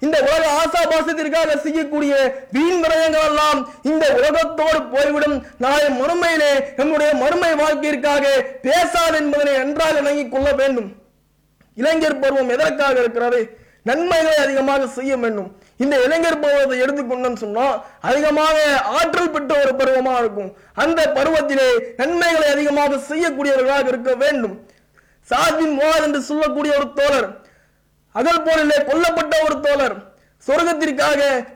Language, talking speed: English, 120 wpm